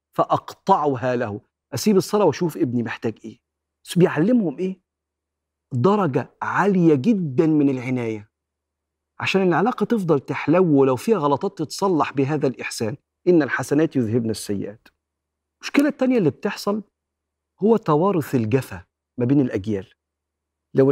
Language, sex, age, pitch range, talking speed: Arabic, male, 50-69, 115-165 Hz, 115 wpm